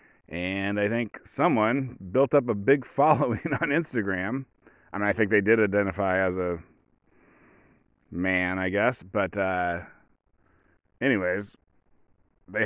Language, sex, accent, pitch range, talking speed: English, male, American, 95-115 Hz, 130 wpm